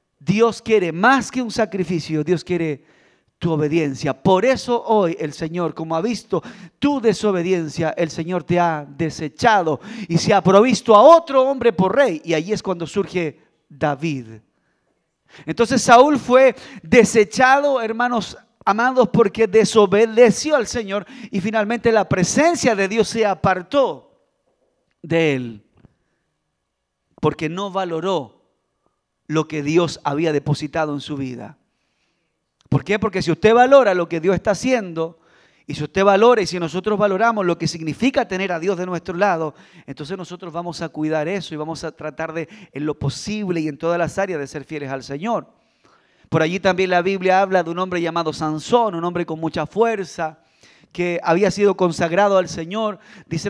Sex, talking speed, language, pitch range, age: male, 165 wpm, Spanish, 165-215 Hz, 40-59